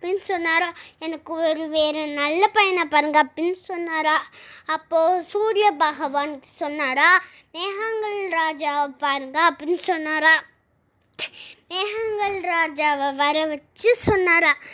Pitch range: 310-375 Hz